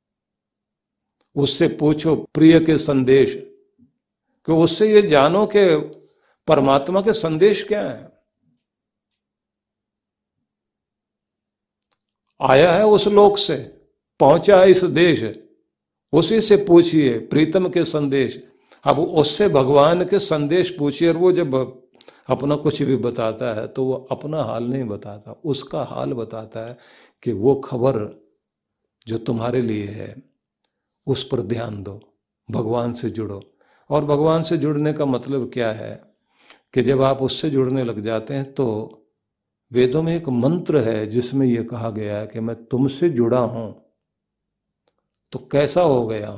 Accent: native